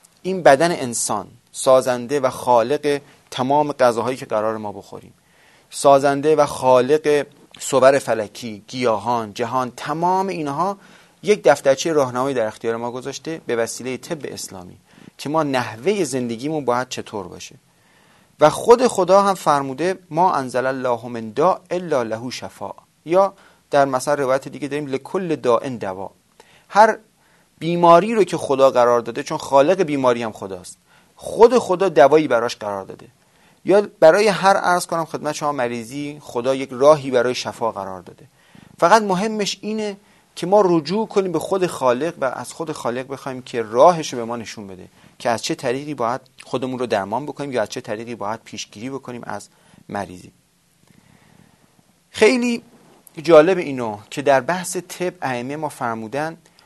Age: 30-49